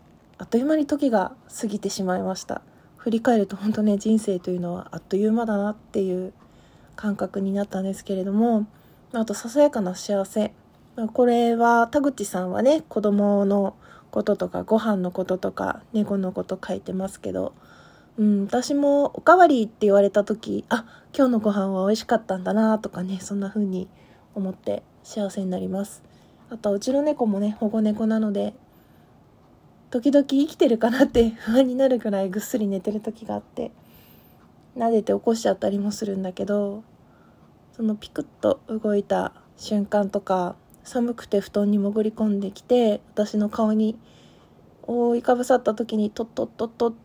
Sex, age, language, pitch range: female, 20-39, Japanese, 195-230 Hz